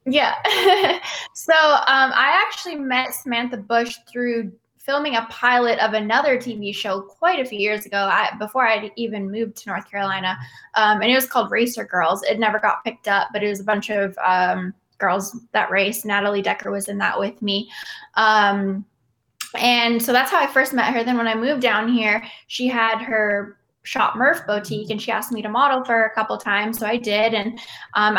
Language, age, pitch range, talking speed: English, 10-29, 210-245 Hz, 200 wpm